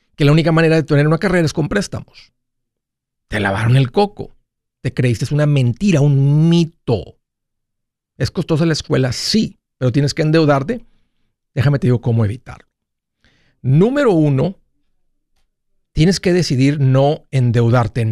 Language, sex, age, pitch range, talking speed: Spanish, male, 50-69, 125-165 Hz, 140 wpm